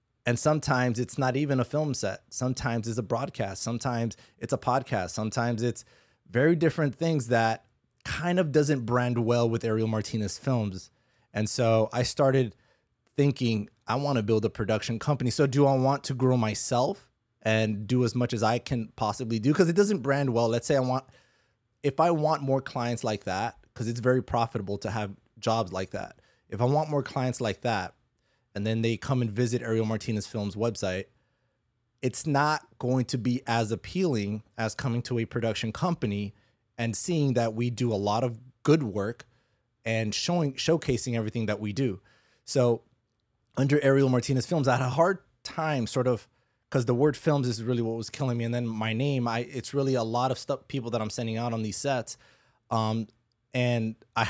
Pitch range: 115-130 Hz